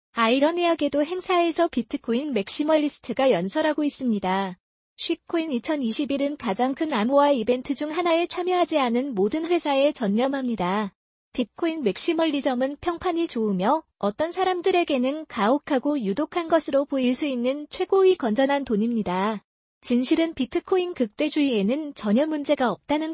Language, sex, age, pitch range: Korean, female, 20-39, 240-325 Hz